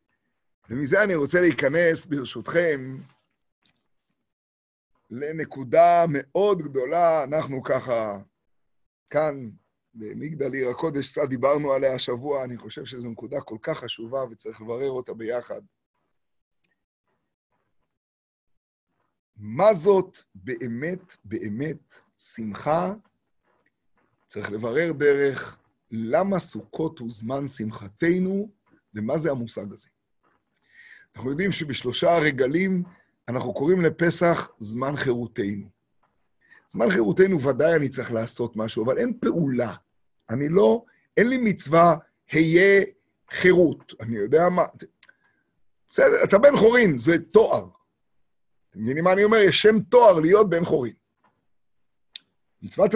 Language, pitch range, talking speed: Hebrew, 125-185 Hz, 105 wpm